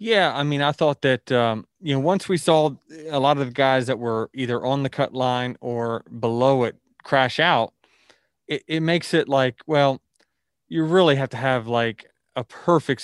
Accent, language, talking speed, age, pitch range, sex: American, English, 200 wpm, 20-39, 125-160 Hz, male